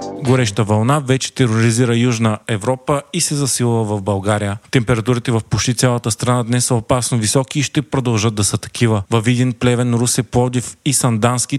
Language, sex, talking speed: Bulgarian, male, 170 wpm